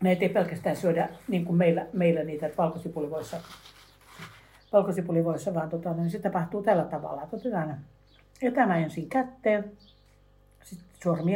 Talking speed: 120 wpm